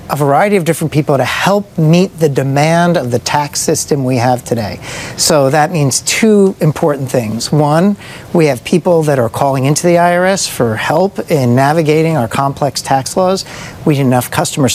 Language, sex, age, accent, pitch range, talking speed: English, male, 50-69, American, 135-175 Hz, 185 wpm